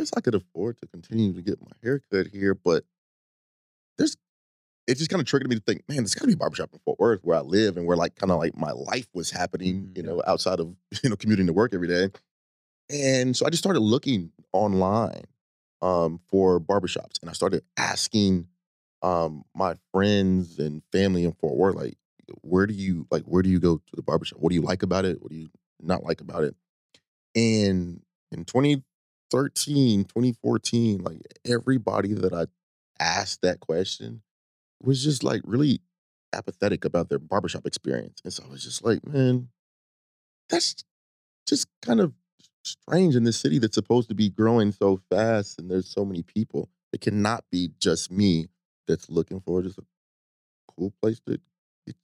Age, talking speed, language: 30-49, 190 wpm, English